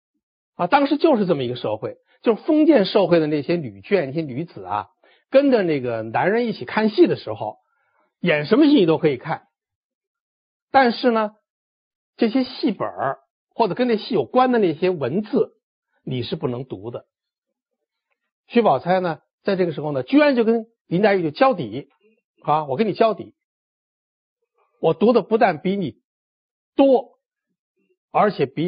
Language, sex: Chinese, male